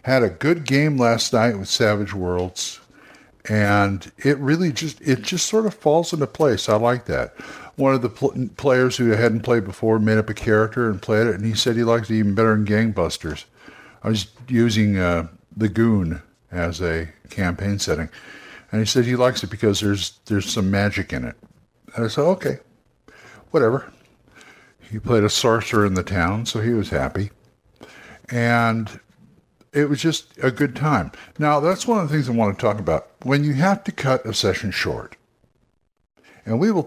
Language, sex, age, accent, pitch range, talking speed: English, male, 60-79, American, 100-140 Hz, 190 wpm